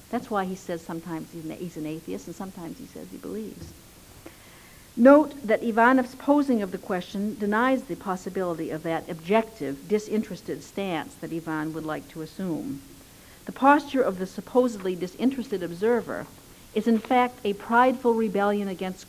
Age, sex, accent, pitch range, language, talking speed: 60-79, female, American, 165-230 Hz, English, 155 wpm